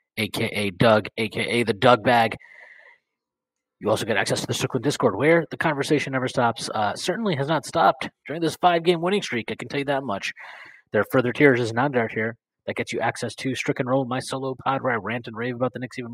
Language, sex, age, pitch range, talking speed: English, male, 30-49, 120-140 Hz, 230 wpm